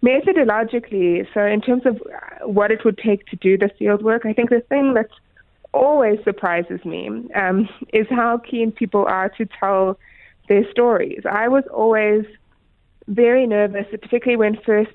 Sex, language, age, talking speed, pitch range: female, English, 20-39, 160 wpm, 190-225 Hz